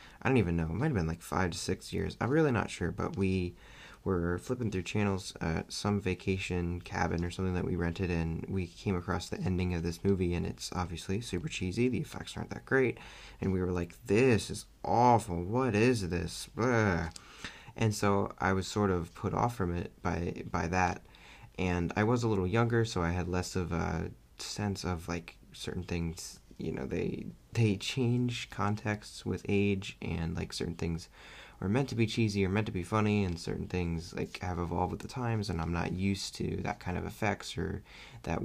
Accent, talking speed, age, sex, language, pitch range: American, 210 wpm, 30-49, male, English, 85-105 Hz